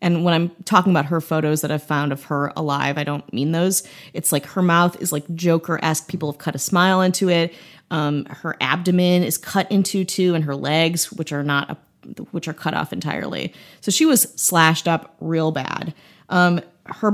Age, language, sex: 30-49, English, female